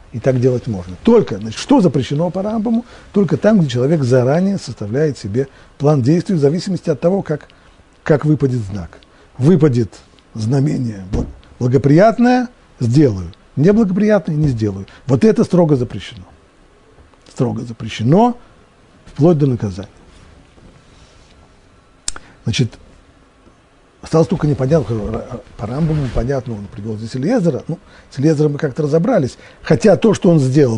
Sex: male